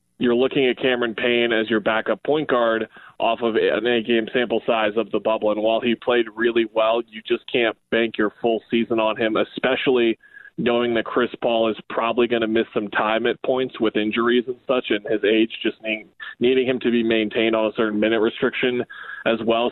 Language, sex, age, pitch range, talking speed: English, male, 20-39, 110-120 Hz, 205 wpm